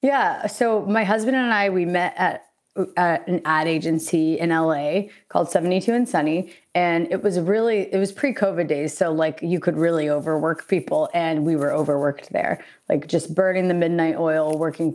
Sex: female